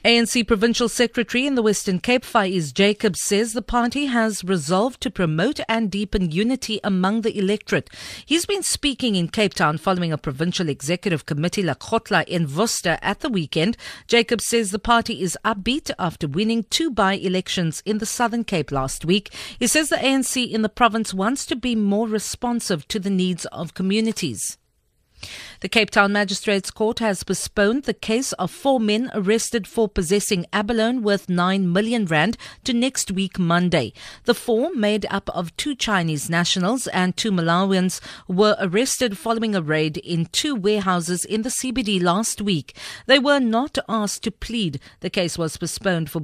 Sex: female